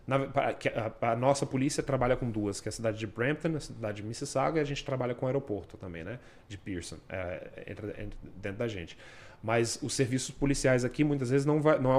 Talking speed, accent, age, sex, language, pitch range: 235 wpm, Brazilian, 20-39, male, Portuguese, 110-135 Hz